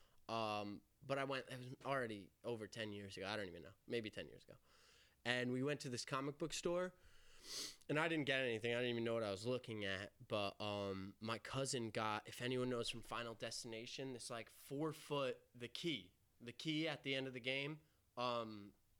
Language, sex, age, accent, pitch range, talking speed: English, male, 20-39, American, 115-145 Hz, 210 wpm